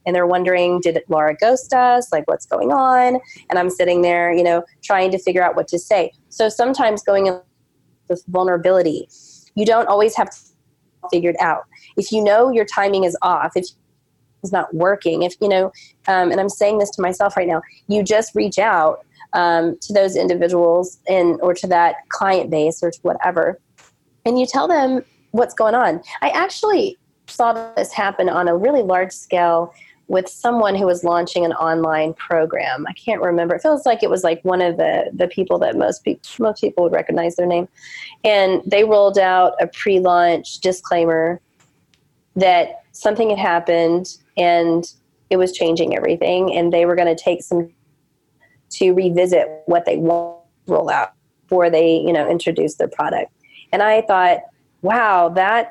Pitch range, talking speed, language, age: 170-205 Hz, 180 wpm, English, 20-39